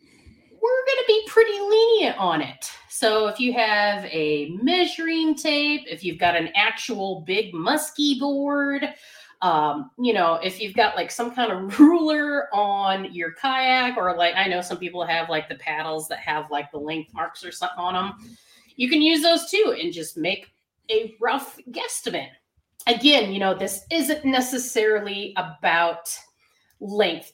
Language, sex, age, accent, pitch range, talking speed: English, female, 30-49, American, 175-260 Hz, 165 wpm